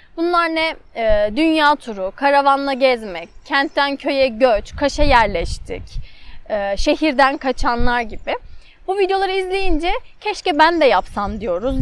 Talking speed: 110 wpm